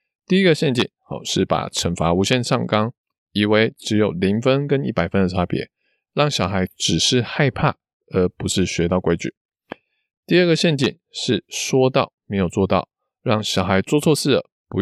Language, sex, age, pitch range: Chinese, male, 20-39, 95-130 Hz